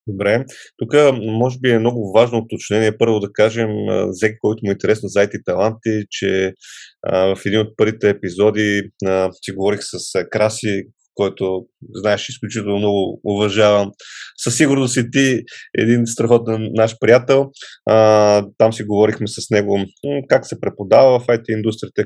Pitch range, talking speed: 105-125 Hz, 150 wpm